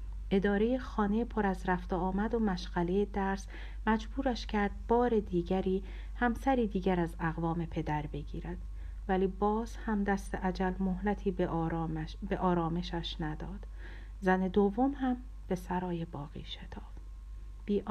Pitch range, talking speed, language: 175-235 Hz, 120 wpm, Persian